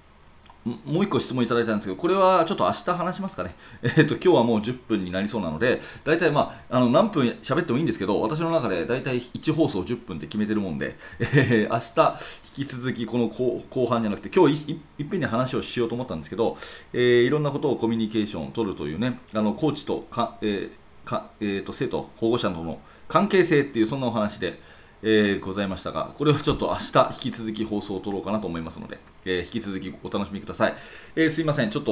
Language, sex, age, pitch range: Japanese, male, 30-49, 100-140 Hz